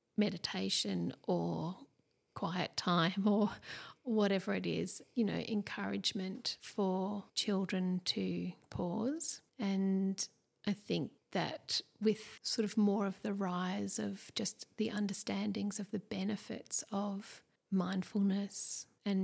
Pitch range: 195-225 Hz